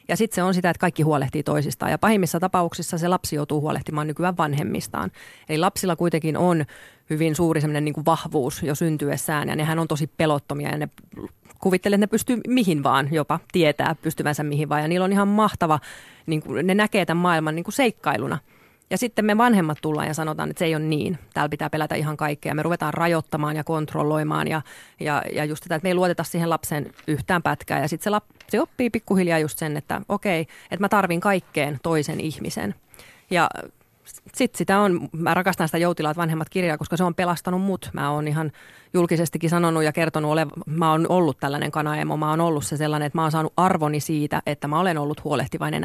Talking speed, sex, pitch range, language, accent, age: 205 wpm, female, 150-180 Hz, Finnish, native, 30-49